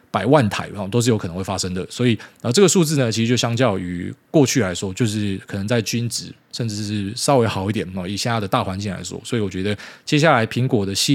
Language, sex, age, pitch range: Chinese, male, 20-39, 100-130 Hz